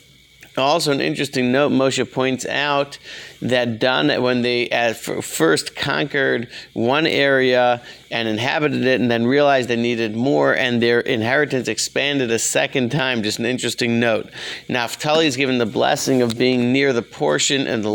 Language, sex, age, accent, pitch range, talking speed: English, male, 40-59, American, 115-135 Hz, 165 wpm